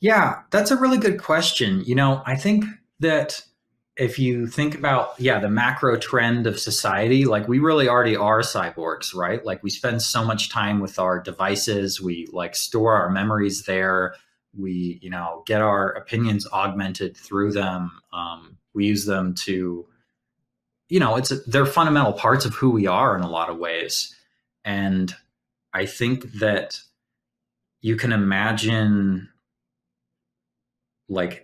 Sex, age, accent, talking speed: male, 20-39, American, 155 wpm